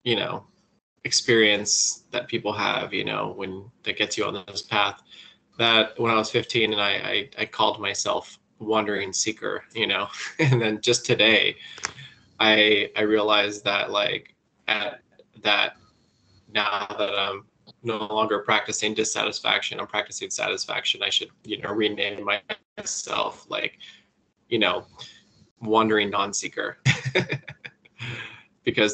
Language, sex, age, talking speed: English, male, 20-39, 130 wpm